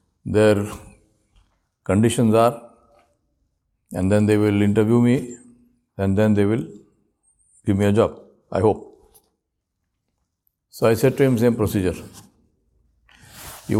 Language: English